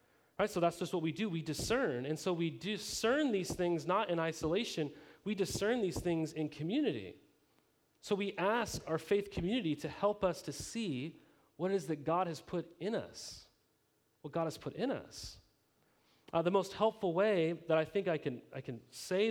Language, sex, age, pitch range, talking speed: English, male, 30-49, 150-190 Hz, 195 wpm